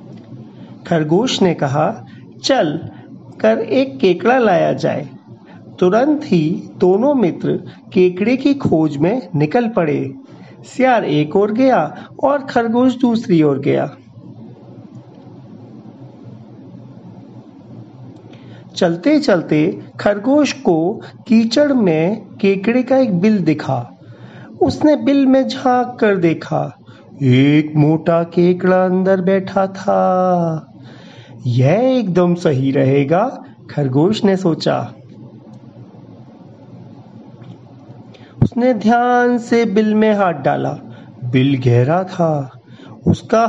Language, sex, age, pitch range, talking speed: English, male, 50-69, 155-235 Hz, 95 wpm